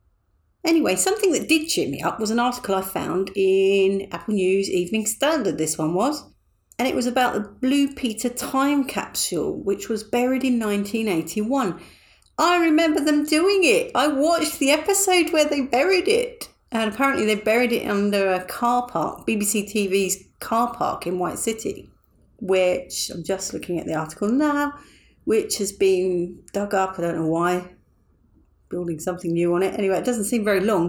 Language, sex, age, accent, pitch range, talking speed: English, female, 40-59, British, 175-245 Hz, 175 wpm